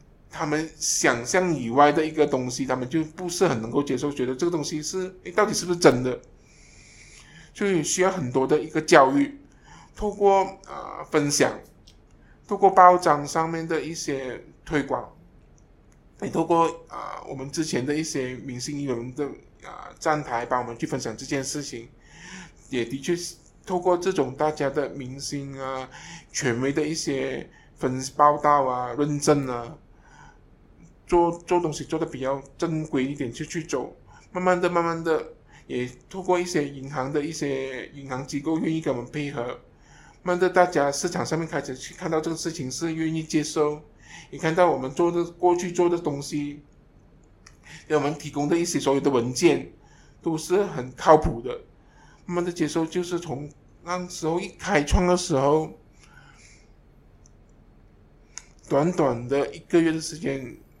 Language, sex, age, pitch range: English, male, 20-39, 135-170 Hz